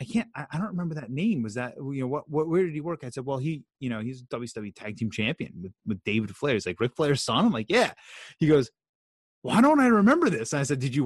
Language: English